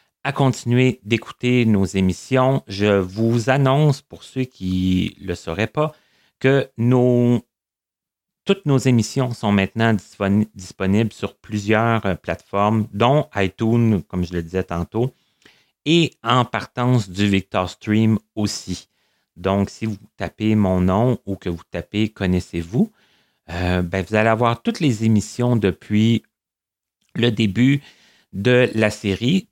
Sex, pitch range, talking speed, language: male, 95-125 Hz, 135 wpm, French